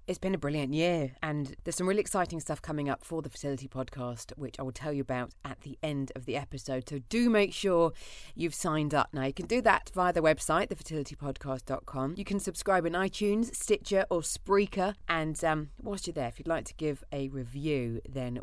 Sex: female